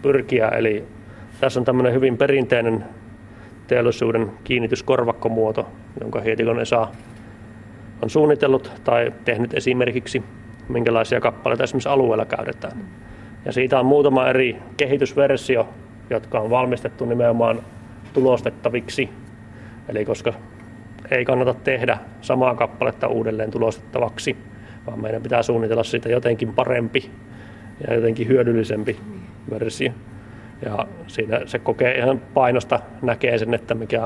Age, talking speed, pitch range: 30-49, 110 wpm, 110-125 Hz